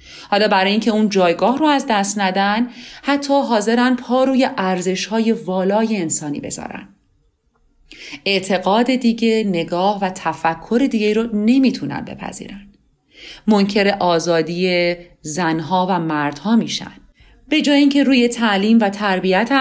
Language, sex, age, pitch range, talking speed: Persian, female, 40-59, 180-250 Hz, 120 wpm